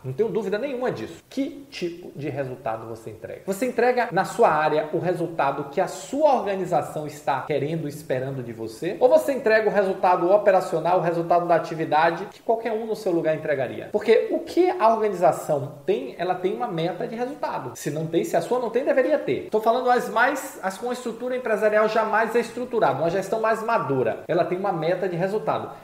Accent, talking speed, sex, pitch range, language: Brazilian, 210 wpm, male, 170-235 Hz, Portuguese